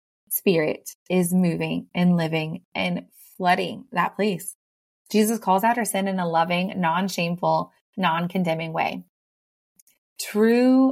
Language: English